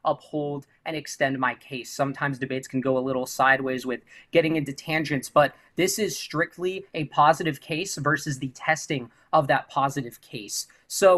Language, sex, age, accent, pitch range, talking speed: English, male, 20-39, American, 135-165 Hz, 165 wpm